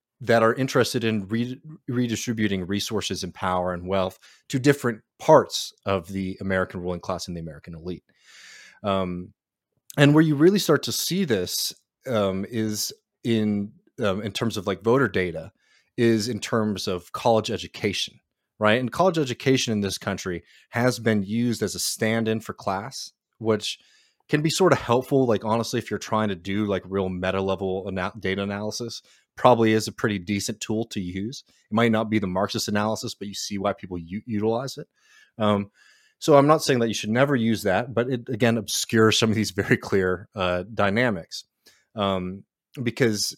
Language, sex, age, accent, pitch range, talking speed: English, male, 30-49, American, 95-120 Hz, 175 wpm